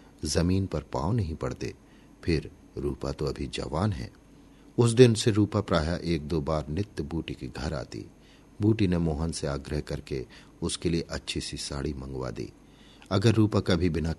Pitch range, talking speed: 75-105 Hz, 175 wpm